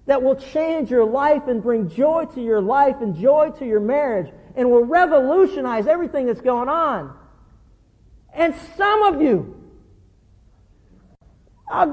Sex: male